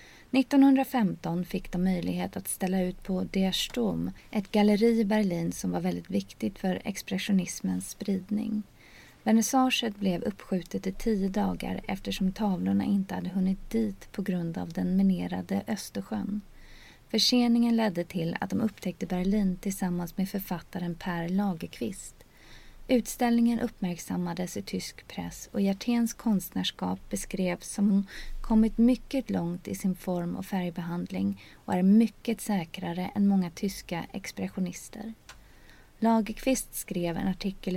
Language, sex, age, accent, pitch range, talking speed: Swedish, female, 30-49, native, 175-220 Hz, 130 wpm